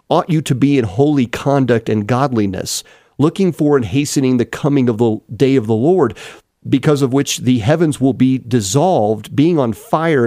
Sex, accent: male, American